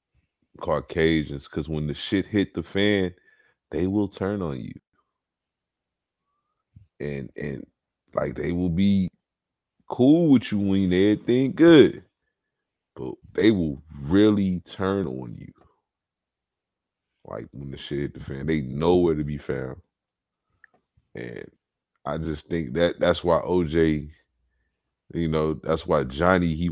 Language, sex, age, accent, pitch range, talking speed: English, male, 30-49, American, 75-95 Hz, 135 wpm